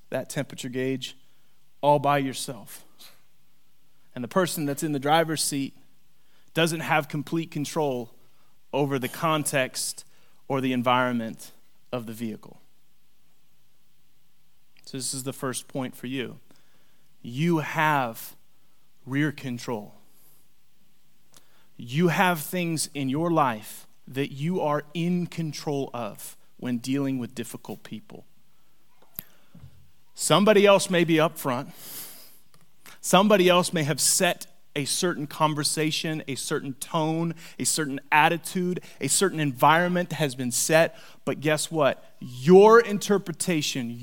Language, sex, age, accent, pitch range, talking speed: English, male, 30-49, American, 135-170 Hz, 120 wpm